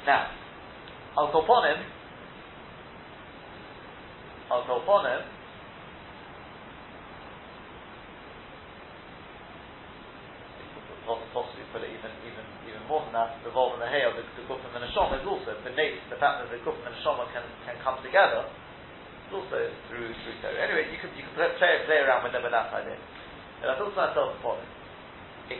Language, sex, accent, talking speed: English, male, British, 160 wpm